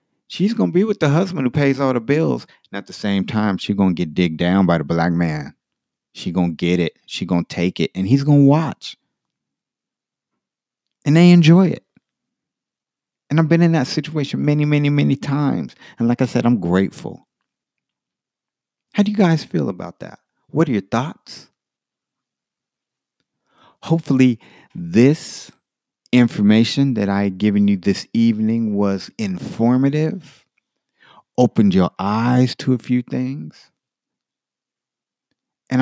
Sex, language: male, English